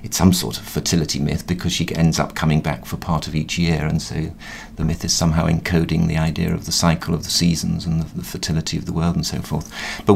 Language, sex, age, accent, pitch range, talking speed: English, male, 50-69, British, 85-105 Hz, 255 wpm